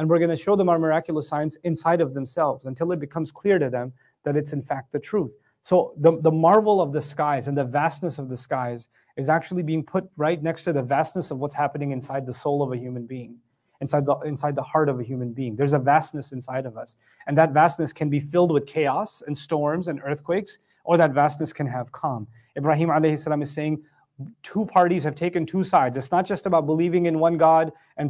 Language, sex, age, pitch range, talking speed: English, male, 30-49, 140-175 Hz, 225 wpm